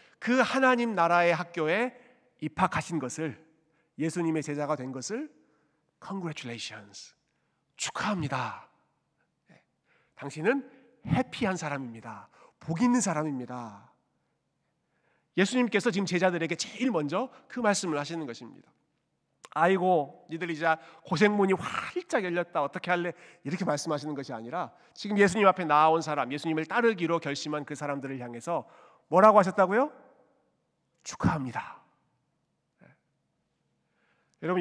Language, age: Korean, 40-59